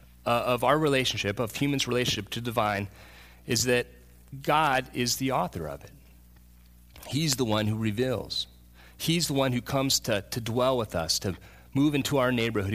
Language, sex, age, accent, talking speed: English, male, 30-49, American, 180 wpm